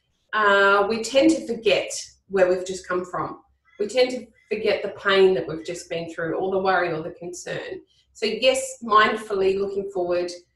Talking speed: 180 wpm